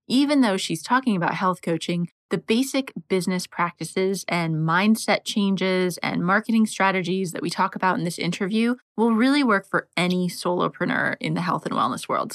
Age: 20-39